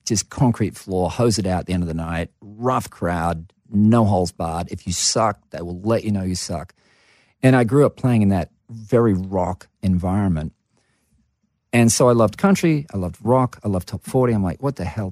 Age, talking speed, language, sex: 40-59, 215 wpm, English, male